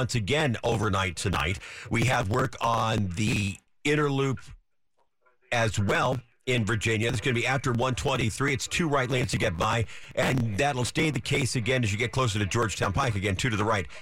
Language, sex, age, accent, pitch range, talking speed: English, male, 50-69, American, 115-140 Hz, 195 wpm